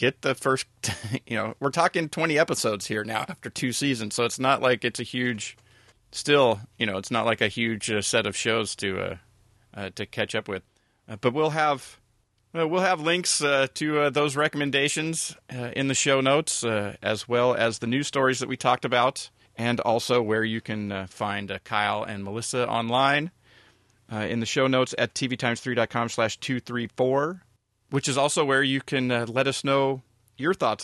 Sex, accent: male, American